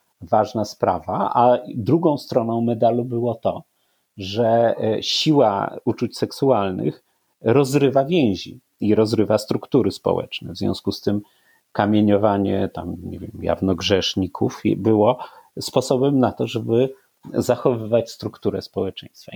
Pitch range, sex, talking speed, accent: 95-125 Hz, male, 110 wpm, native